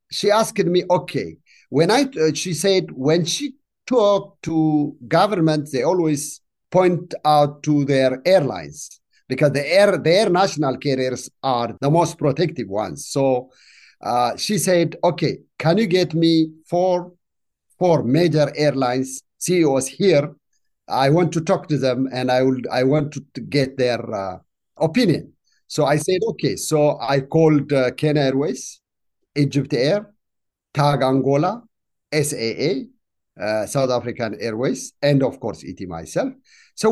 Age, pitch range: 50-69, 130-175 Hz